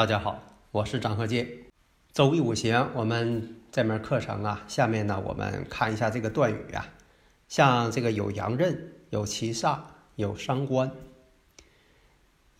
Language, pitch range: Chinese, 110-145 Hz